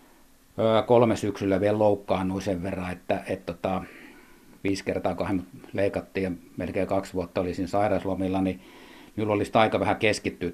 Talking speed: 135 wpm